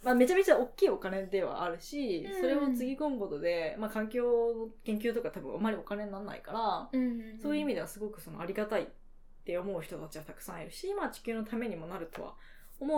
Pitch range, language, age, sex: 195-255 Hz, Japanese, 20-39, female